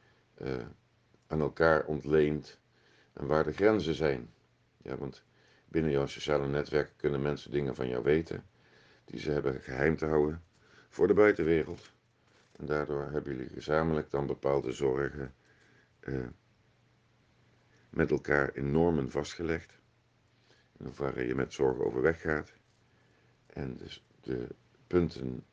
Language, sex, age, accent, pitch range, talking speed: Dutch, male, 50-69, Dutch, 70-90 Hz, 125 wpm